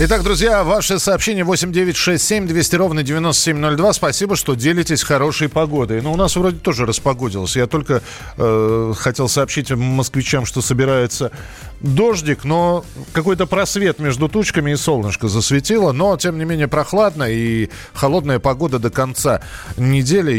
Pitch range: 115-160 Hz